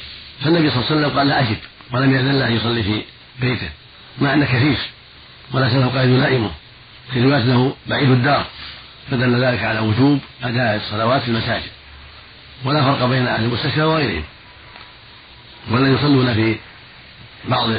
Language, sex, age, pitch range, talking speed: Arabic, male, 50-69, 110-130 Hz, 150 wpm